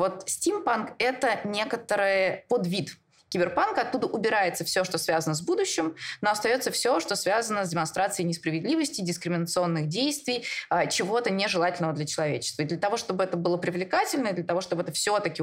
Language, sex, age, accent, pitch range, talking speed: Russian, female, 20-39, native, 165-225 Hz, 150 wpm